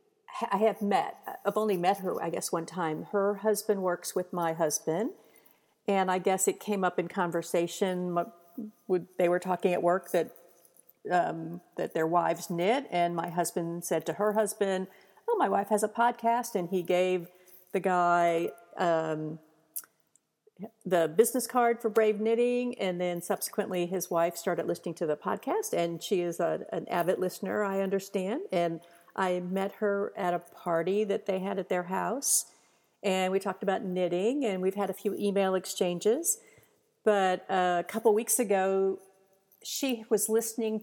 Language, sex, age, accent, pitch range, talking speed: English, female, 50-69, American, 175-215 Hz, 165 wpm